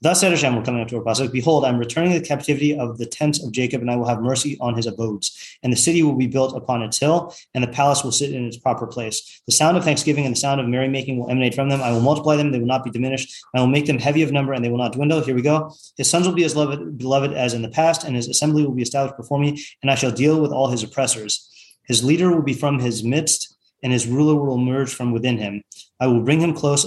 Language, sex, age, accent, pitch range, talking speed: English, male, 30-49, American, 120-145 Hz, 290 wpm